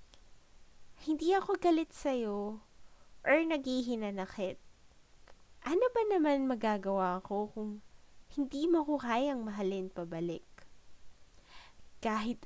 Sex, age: female, 20-39